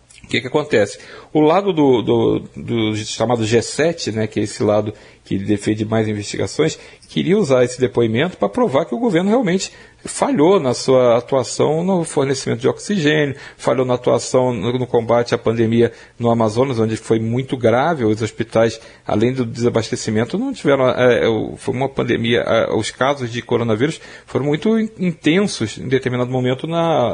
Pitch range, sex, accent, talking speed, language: 120-160 Hz, male, Brazilian, 155 wpm, Portuguese